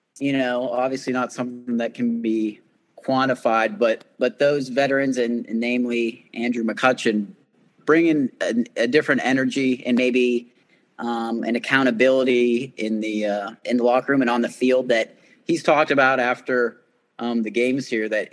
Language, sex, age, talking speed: English, male, 30-49, 160 wpm